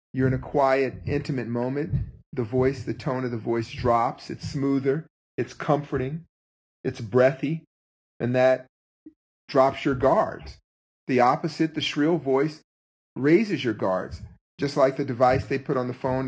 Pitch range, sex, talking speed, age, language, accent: 120-150 Hz, male, 155 wpm, 40-59, English, American